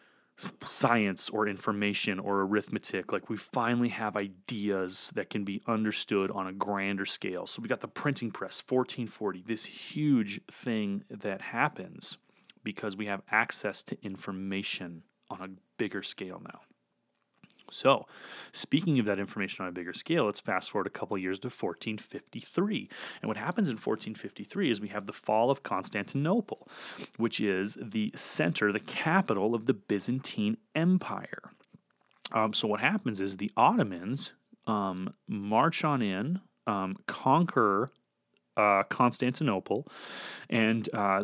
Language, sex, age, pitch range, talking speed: English, male, 30-49, 100-130 Hz, 145 wpm